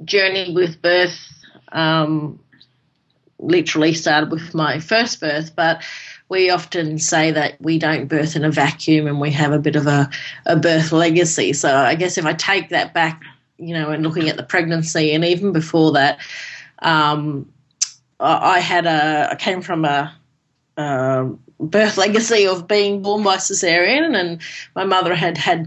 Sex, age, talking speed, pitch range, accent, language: female, 30-49, 165 wpm, 160-200 Hz, Australian, English